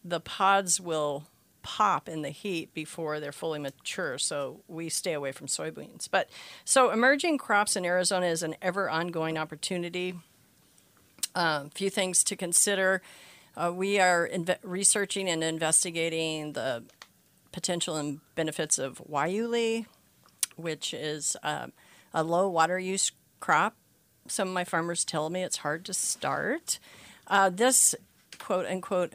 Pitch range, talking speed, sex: 155-190 Hz, 135 wpm, female